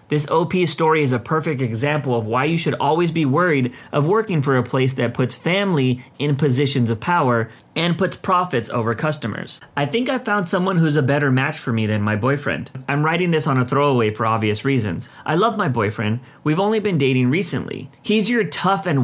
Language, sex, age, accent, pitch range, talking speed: English, male, 30-49, American, 120-165 Hz, 210 wpm